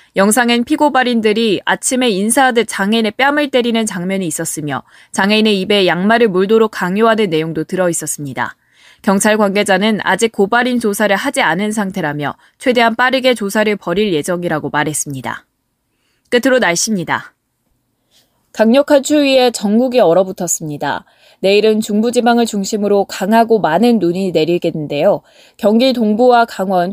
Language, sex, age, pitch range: Korean, female, 20-39, 175-245 Hz